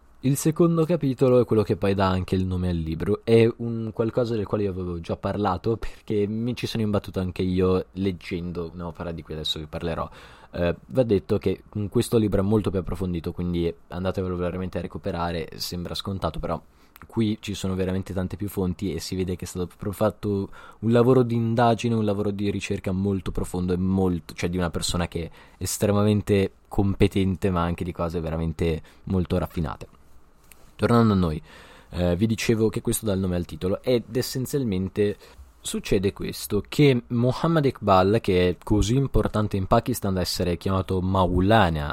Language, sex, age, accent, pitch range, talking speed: Italian, male, 20-39, native, 85-110 Hz, 185 wpm